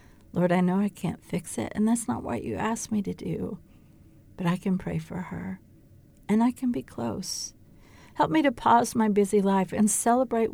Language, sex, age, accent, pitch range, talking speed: English, female, 60-79, American, 175-230 Hz, 205 wpm